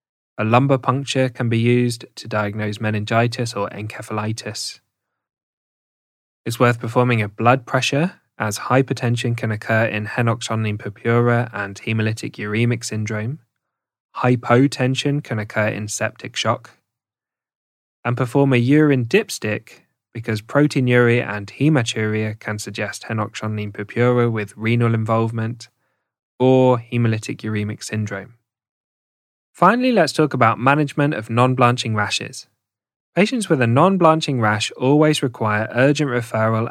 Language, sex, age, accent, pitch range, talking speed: English, male, 20-39, British, 105-130 Hz, 115 wpm